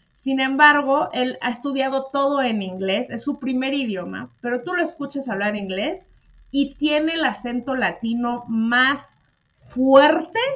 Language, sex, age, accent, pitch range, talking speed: Spanish, female, 30-49, Mexican, 230-290 Hz, 140 wpm